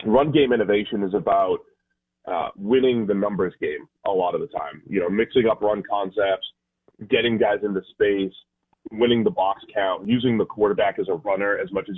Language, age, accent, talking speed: English, 30-49, American, 190 wpm